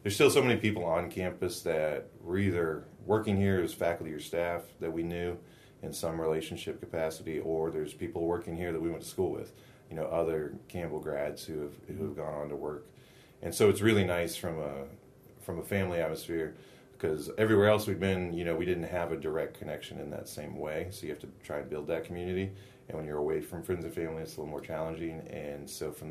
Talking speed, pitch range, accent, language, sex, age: 230 wpm, 75-90 Hz, American, English, male, 30-49